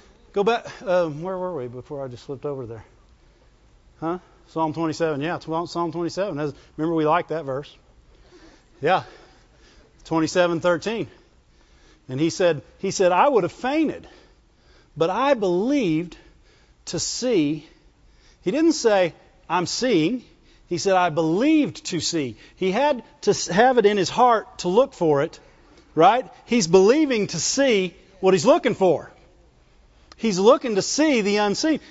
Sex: male